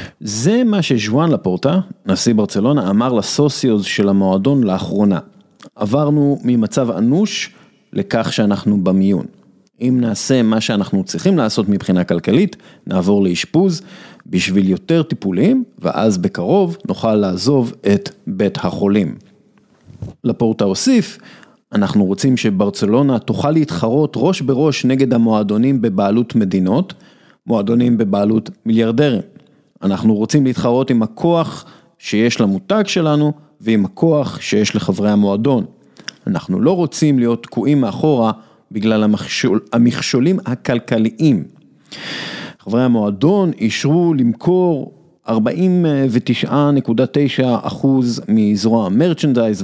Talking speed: 100 wpm